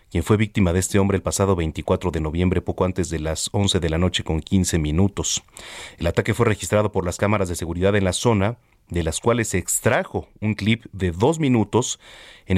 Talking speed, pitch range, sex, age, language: 215 wpm, 90-115 Hz, male, 40-59, Spanish